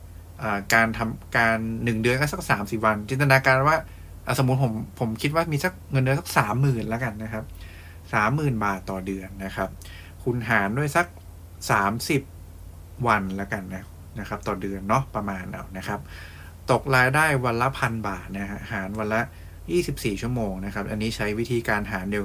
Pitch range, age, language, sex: 90-120 Hz, 20-39, English, male